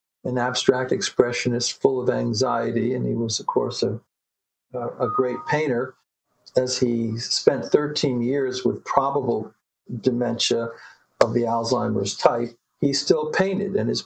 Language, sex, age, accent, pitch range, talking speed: English, male, 50-69, American, 120-135 Hz, 135 wpm